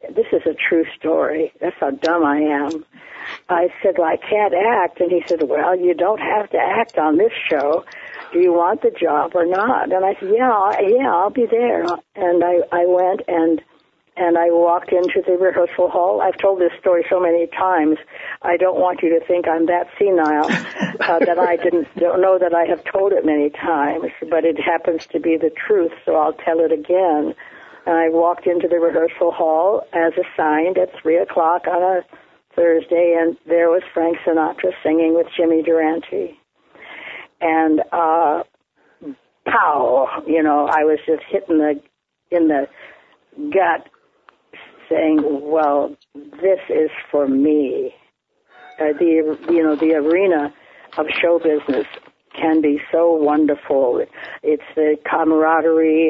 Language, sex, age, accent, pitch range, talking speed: English, female, 60-79, American, 160-180 Hz, 165 wpm